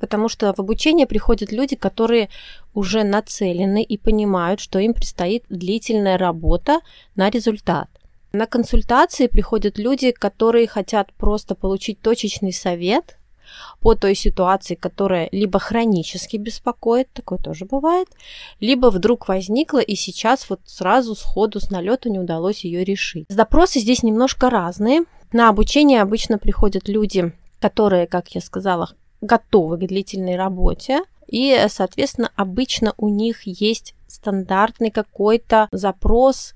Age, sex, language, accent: 20-39, female, Russian, native